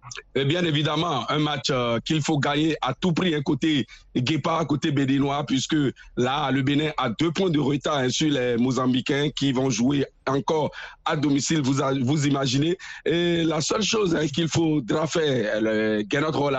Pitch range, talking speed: 135-160 Hz, 185 wpm